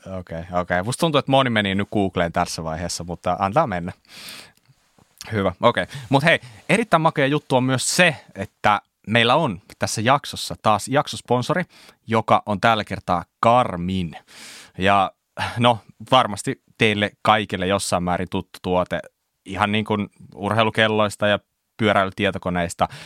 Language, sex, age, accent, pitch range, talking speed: Finnish, male, 30-49, native, 90-120 Hz, 140 wpm